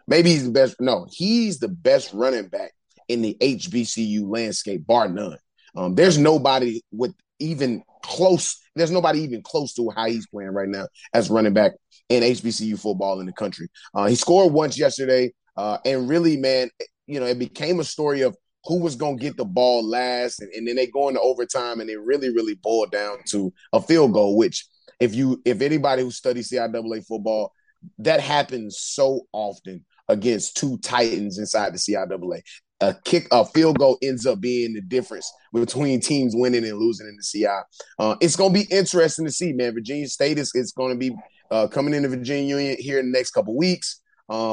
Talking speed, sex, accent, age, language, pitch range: 195 wpm, male, American, 30-49, English, 110-145 Hz